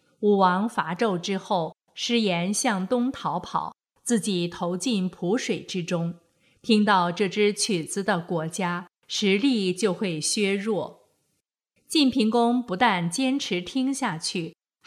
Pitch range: 180-230 Hz